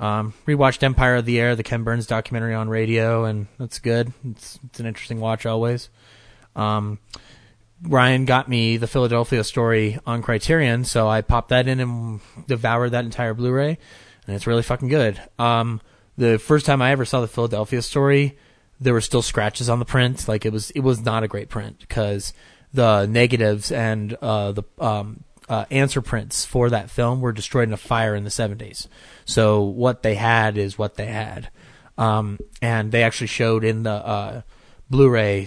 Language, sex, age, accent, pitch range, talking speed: English, male, 20-39, American, 110-125 Hz, 185 wpm